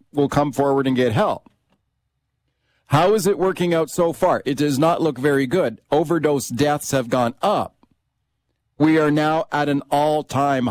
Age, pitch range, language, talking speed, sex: 40-59, 130-160 Hz, English, 170 wpm, male